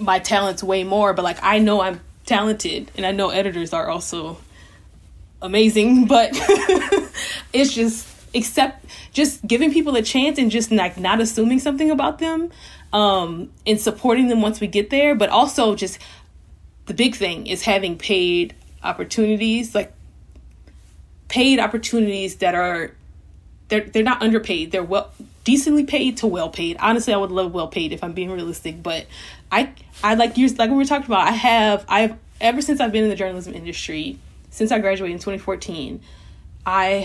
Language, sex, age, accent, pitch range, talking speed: English, female, 10-29, American, 175-235 Hz, 170 wpm